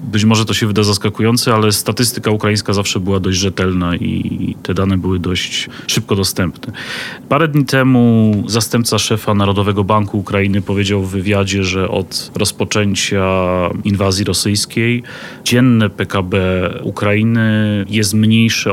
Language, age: Polish, 30-49